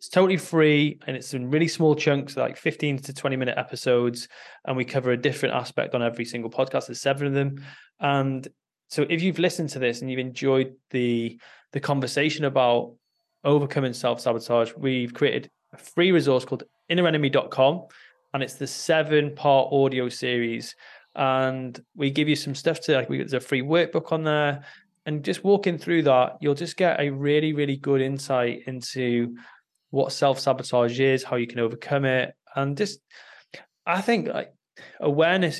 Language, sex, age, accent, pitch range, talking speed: English, male, 20-39, British, 130-160 Hz, 165 wpm